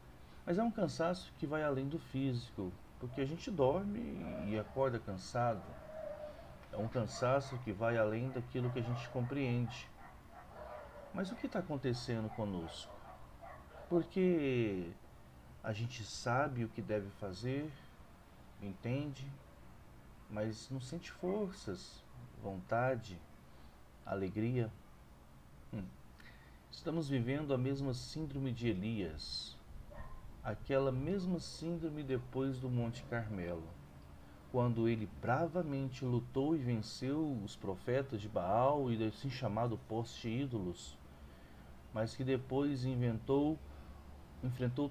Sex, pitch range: male, 95-135 Hz